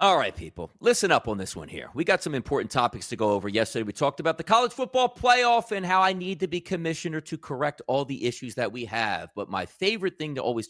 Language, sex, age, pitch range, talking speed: English, male, 40-59, 135-200 Hz, 260 wpm